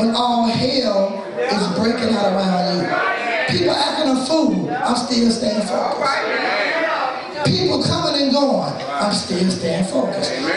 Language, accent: English, American